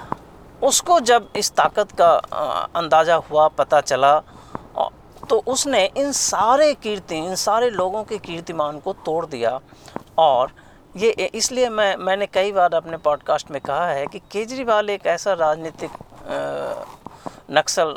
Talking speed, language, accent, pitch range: 135 wpm, Hindi, native, 155-220 Hz